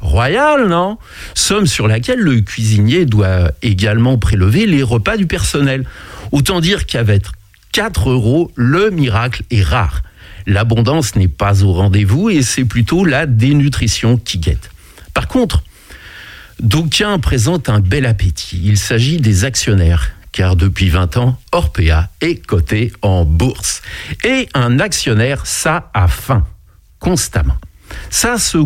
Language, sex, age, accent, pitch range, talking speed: French, male, 60-79, French, 100-145 Hz, 135 wpm